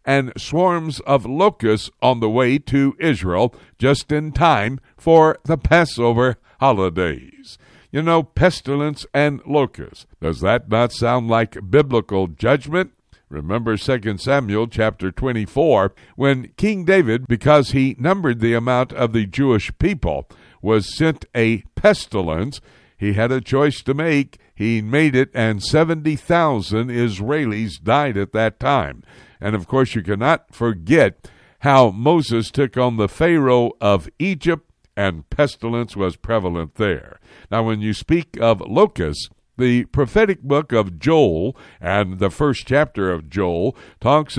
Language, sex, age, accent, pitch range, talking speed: English, male, 60-79, American, 105-140 Hz, 140 wpm